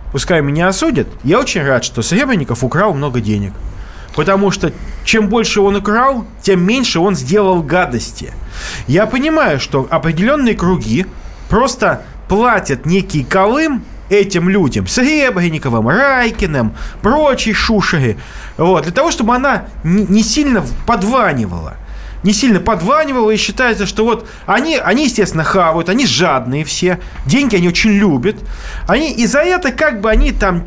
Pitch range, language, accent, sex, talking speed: 165-235 Hz, Russian, native, male, 135 wpm